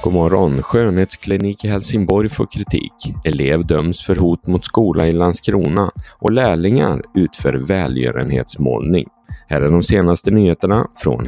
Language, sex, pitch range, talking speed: Swedish, male, 75-100 Hz, 135 wpm